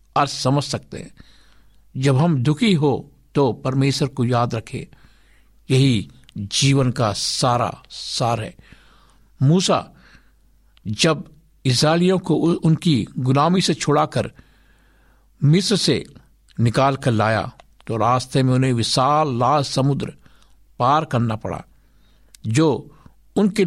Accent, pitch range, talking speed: native, 120-155 Hz, 105 wpm